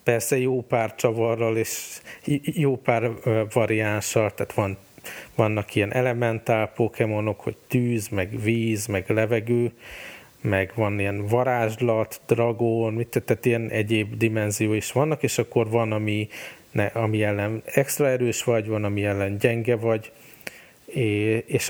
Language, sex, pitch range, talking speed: Hungarian, male, 105-115 Hz, 125 wpm